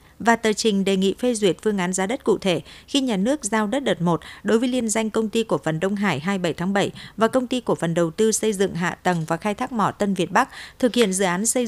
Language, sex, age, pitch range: Vietnamese, female, 50-69, 185-225 Hz